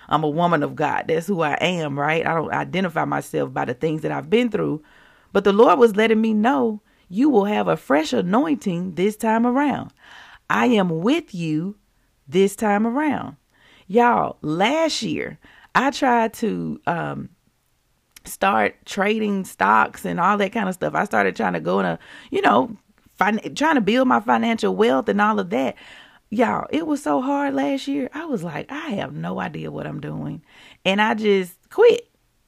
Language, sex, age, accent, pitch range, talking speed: English, female, 40-59, American, 175-260 Hz, 185 wpm